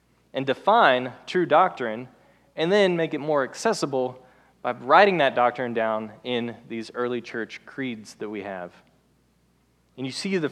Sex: male